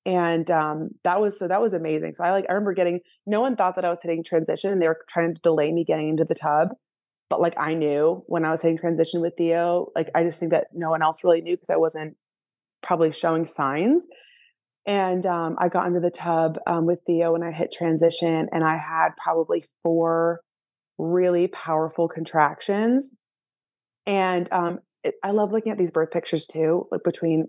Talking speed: 205 wpm